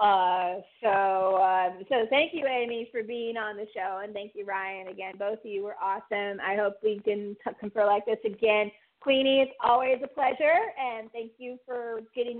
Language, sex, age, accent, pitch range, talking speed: English, female, 30-49, American, 210-255 Hz, 195 wpm